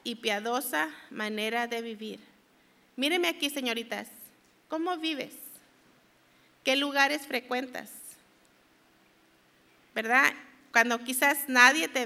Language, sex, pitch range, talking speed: English, female, 235-285 Hz, 90 wpm